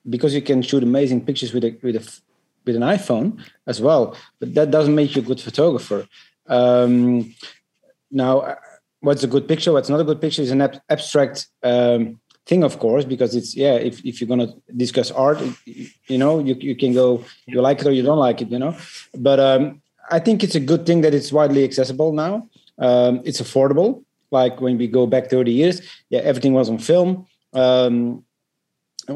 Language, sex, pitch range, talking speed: English, male, 120-145 Hz, 200 wpm